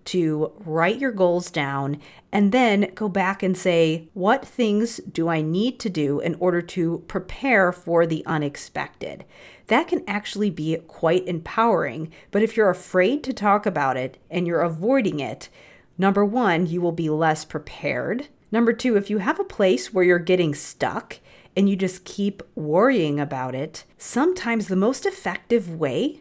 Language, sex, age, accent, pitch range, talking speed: English, female, 40-59, American, 160-220 Hz, 165 wpm